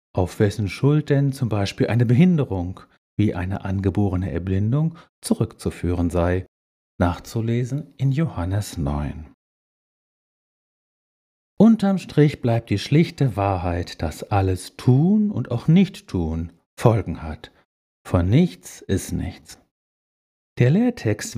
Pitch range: 95-140 Hz